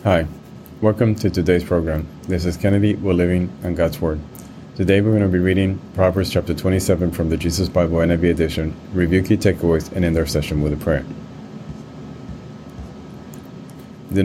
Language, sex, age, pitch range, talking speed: English, male, 30-49, 85-100 Hz, 165 wpm